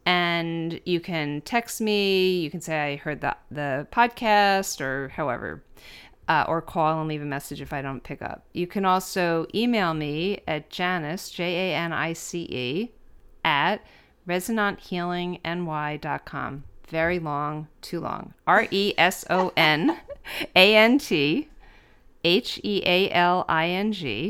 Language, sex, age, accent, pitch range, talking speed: English, female, 40-59, American, 155-195 Hz, 120 wpm